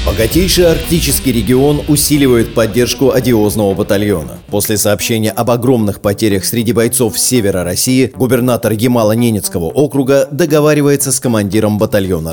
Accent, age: native, 30-49